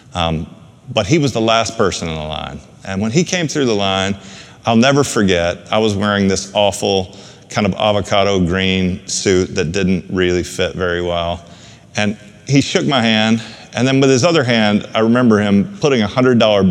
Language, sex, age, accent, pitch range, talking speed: English, male, 30-49, American, 95-125 Hz, 190 wpm